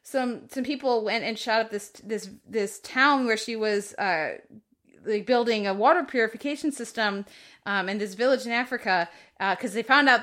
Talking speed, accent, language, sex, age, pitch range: 180 wpm, American, English, female, 30-49, 215-285 Hz